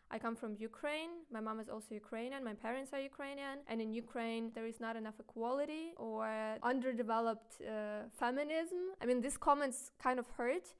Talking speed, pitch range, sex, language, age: 180 wpm, 205-240 Hz, female, English, 20-39